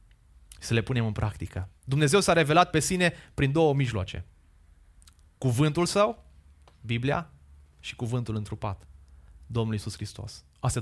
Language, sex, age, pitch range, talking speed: Romanian, male, 20-39, 80-125 Hz, 130 wpm